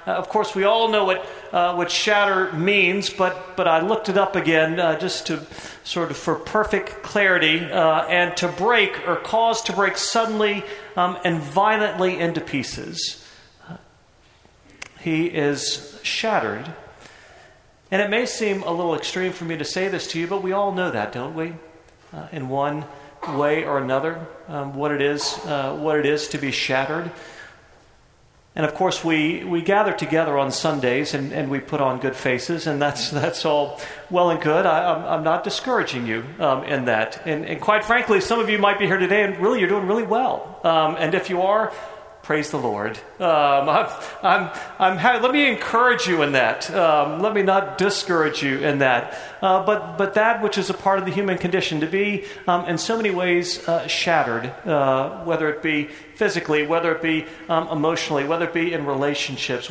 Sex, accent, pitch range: male, American, 145-195 Hz